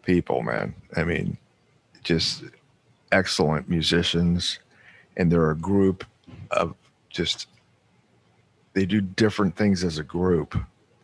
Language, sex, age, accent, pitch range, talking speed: English, male, 50-69, American, 85-105 Hz, 110 wpm